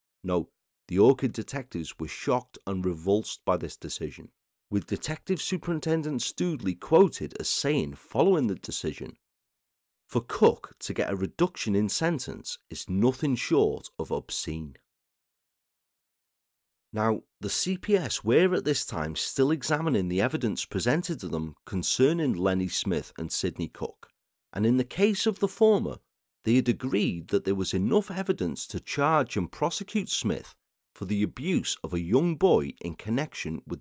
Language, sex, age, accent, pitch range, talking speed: English, male, 40-59, British, 95-160 Hz, 150 wpm